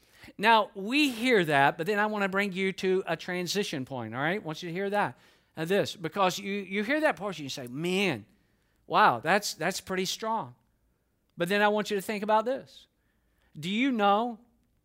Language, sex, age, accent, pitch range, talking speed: English, male, 50-69, American, 160-225 Hz, 205 wpm